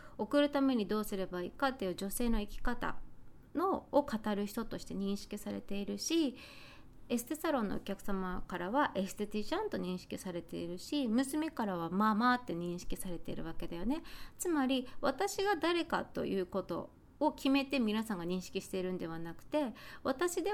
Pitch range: 195-290 Hz